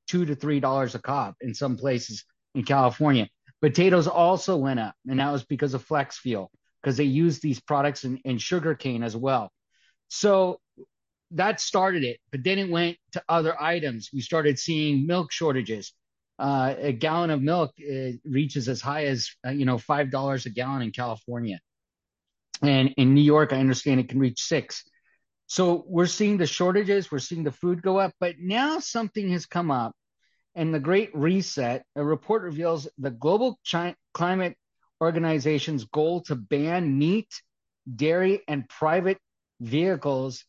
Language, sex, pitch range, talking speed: English, male, 130-175 Hz, 165 wpm